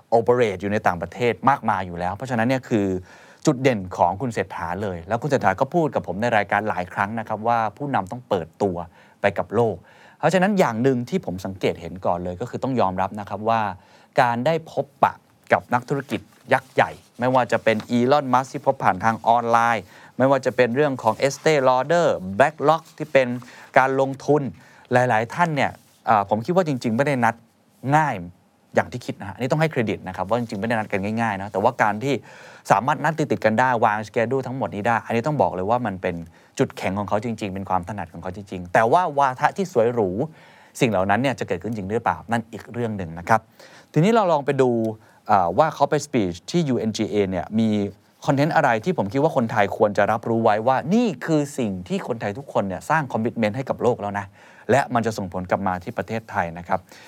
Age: 20-39